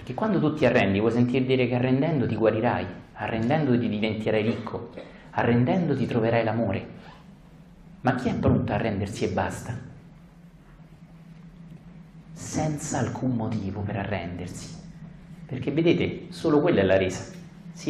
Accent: native